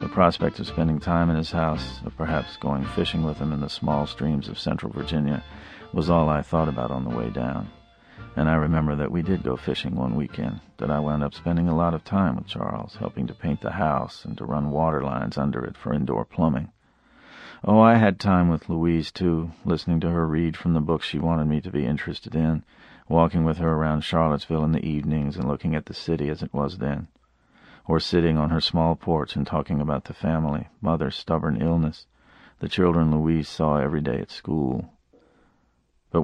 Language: English